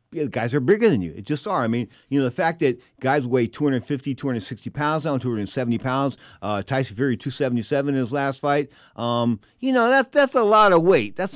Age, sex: 50-69, male